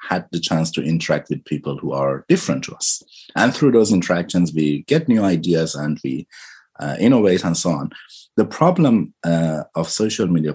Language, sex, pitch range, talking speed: English, male, 75-95 Hz, 190 wpm